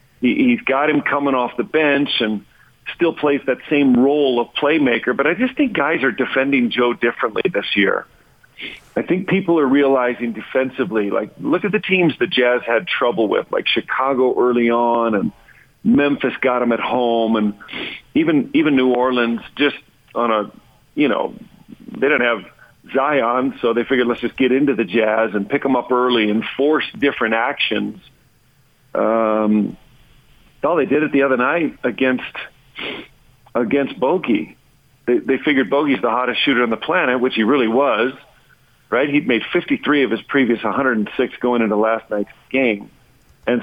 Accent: American